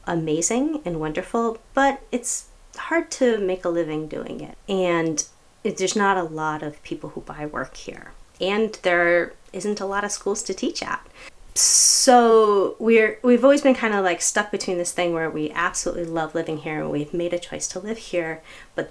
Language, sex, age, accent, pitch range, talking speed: English, female, 30-49, American, 165-220 Hz, 190 wpm